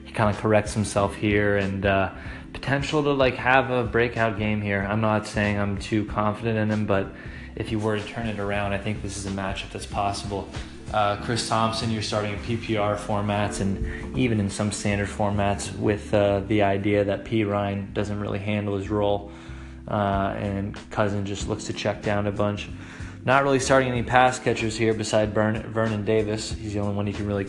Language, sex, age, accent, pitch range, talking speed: English, male, 20-39, American, 100-115 Hz, 205 wpm